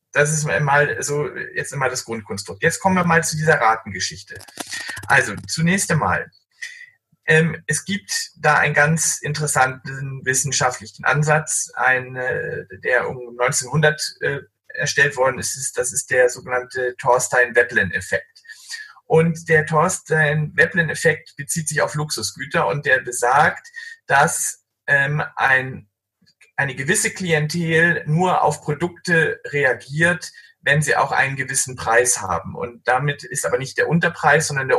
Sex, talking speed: male, 135 wpm